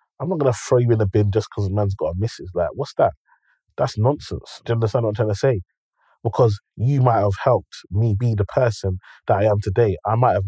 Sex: male